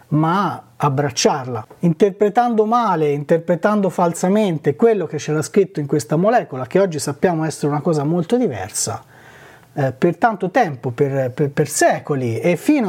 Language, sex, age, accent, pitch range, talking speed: Italian, male, 30-49, native, 145-190 Hz, 145 wpm